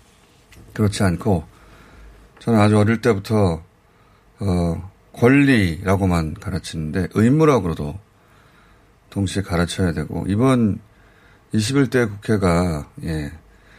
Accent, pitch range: native, 95-125 Hz